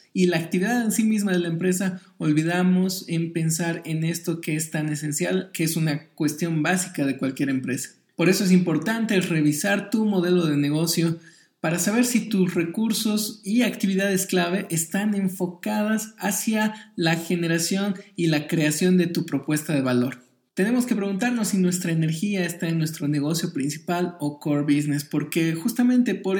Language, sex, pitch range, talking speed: Spanish, male, 155-195 Hz, 165 wpm